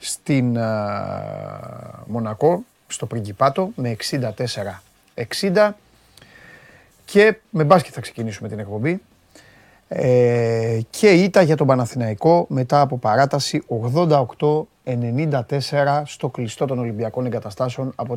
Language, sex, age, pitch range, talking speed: Greek, male, 30-49, 115-160 Hz, 100 wpm